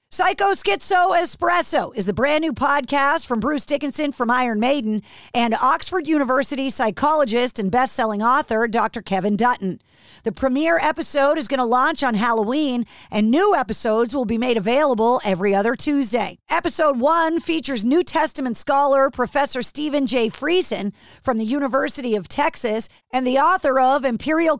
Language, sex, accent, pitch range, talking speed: English, female, American, 230-300 Hz, 155 wpm